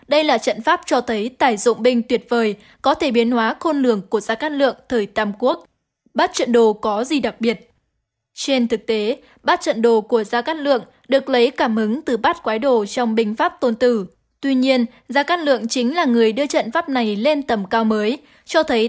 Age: 10-29